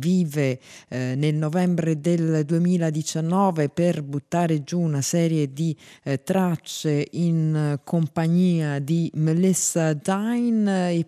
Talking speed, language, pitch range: 105 wpm, Italian, 130-165 Hz